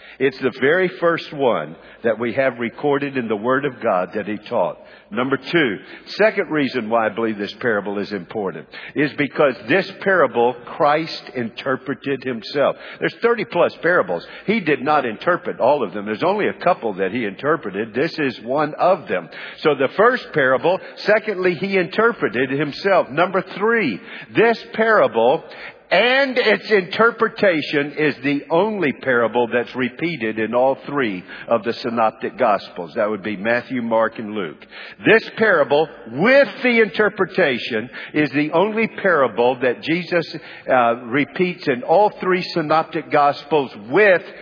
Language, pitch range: English, 120-170 Hz